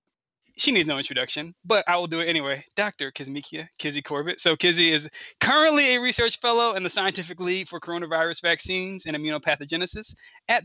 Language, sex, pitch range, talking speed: English, male, 145-175 Hz, 175 wpm